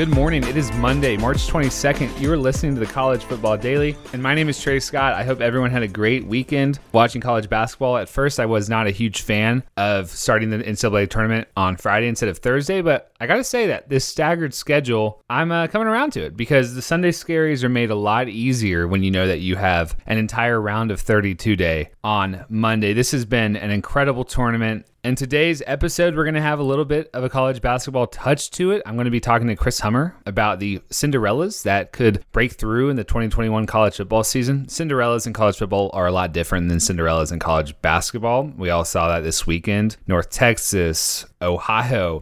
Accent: American